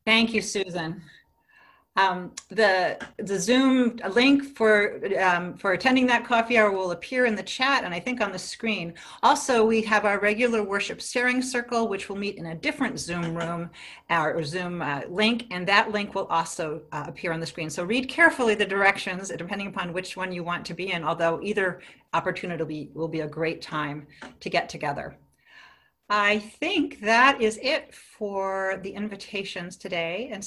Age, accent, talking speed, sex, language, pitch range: 40-59, American, 180 wpm, female, English, 175-230 Hz